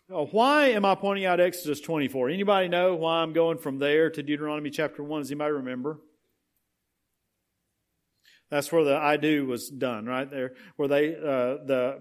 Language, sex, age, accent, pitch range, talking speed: English, male, 40-59, American, 150-200 Hz, 175 wpm